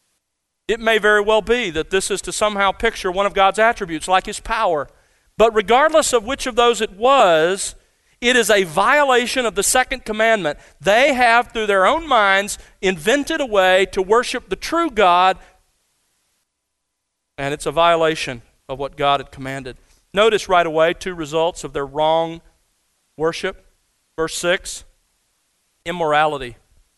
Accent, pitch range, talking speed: American, 165-220 Hz, 155 wpm